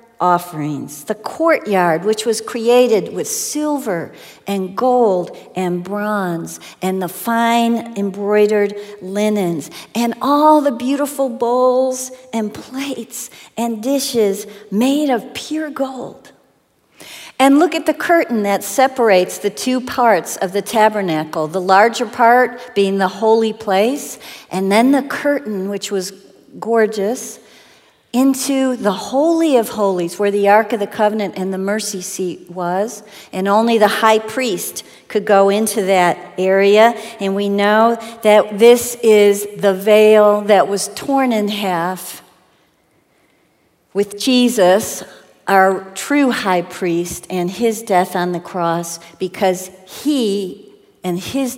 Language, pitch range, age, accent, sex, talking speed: English, 185-240 Hz, 50-69, American, female, 130 wpm